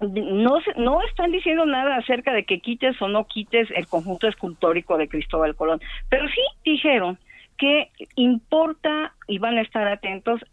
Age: 50-69